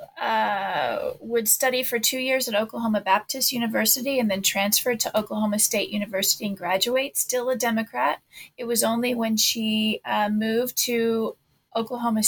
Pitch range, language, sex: 205-230 Hz, English, female